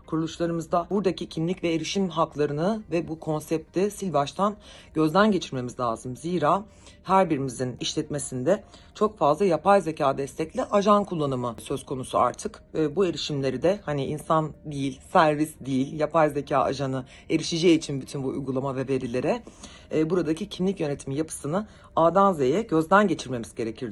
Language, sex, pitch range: Turkish, female, 135-180 Hz